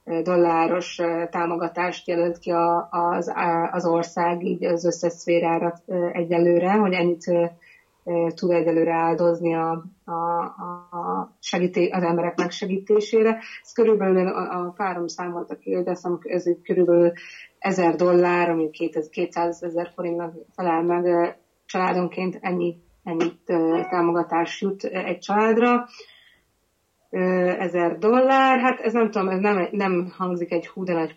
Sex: female